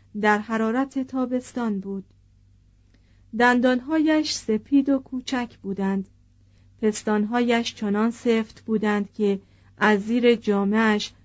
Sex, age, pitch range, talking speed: female, 40-59, 195-245 Hz, 90 wpm